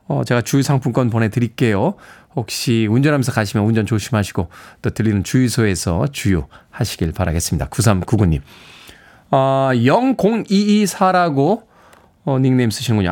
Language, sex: Korean, male